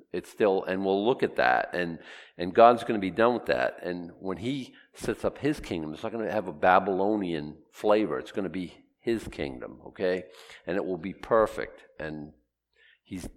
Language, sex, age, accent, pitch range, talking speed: English, male, 50-69, American, 95-160 Hz, 200 wpm